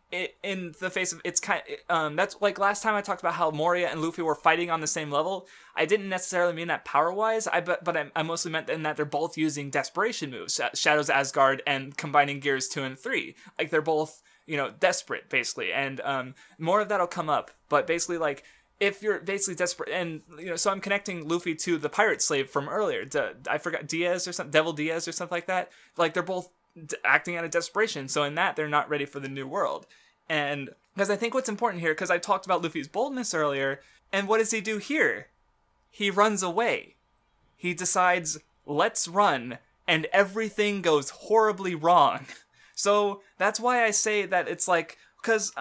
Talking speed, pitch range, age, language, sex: 210 wpm, 155-205 Hz, 20-39, English, male